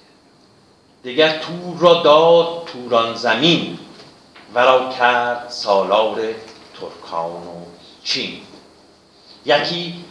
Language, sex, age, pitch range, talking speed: Persian, male, 50-69, 115-175 Hz, 85 wpm